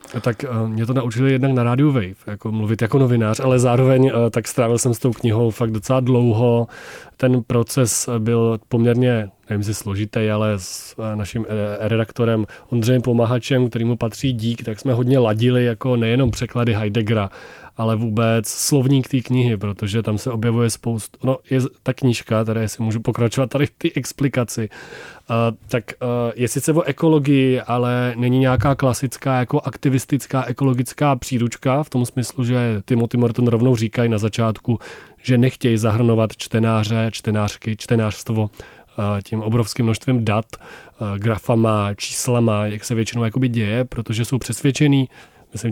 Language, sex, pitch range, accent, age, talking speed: Czech, male, 115-130 Hz, native, 30-49, 150 wpm